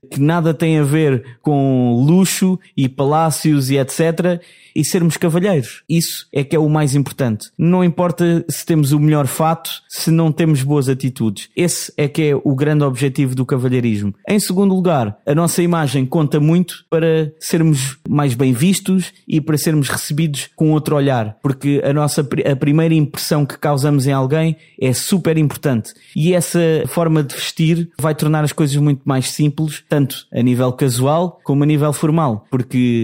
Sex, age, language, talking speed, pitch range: male, 20-39, Portuguese, 175 wpm, 130-160 Hz